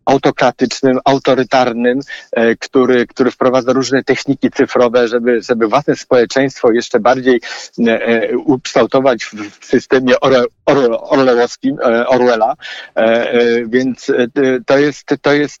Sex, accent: male, native